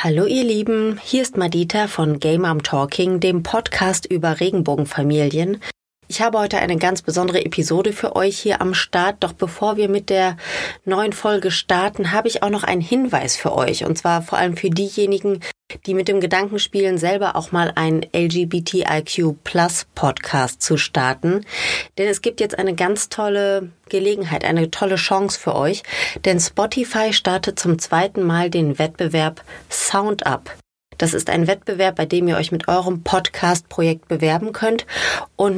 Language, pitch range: German, 165-200 Hz